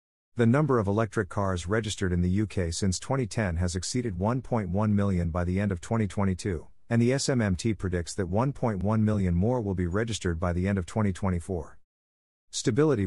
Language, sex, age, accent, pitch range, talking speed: English, male, 50-69, American, 90-115 Hz, 170 wpm